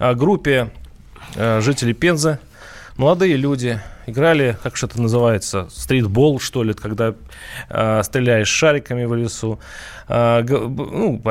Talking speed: 95 wpm